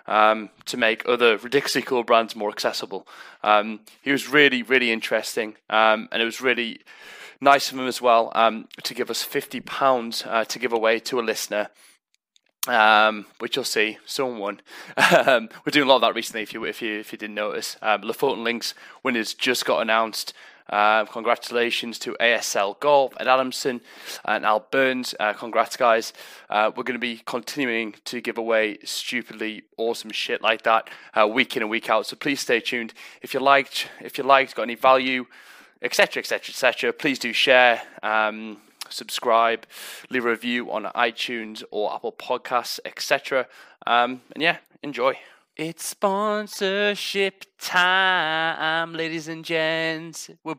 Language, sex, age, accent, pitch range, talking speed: English, male, 20-39, British, 115-160 Hz, 170 wpm